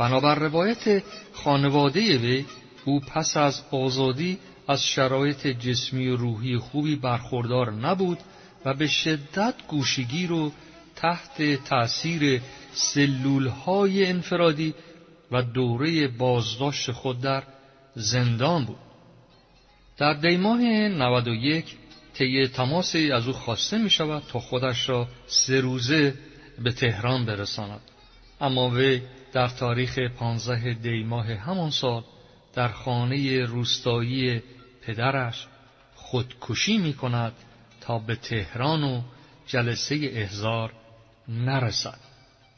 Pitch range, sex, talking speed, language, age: 125-155 Hz, male, 105 wpm, Persian, 50-69